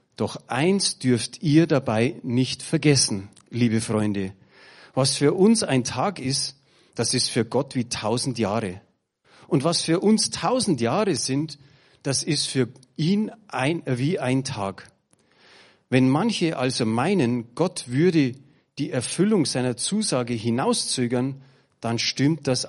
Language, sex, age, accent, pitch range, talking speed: German, male, 40-59, German, 125-160 Hz, 130 wpm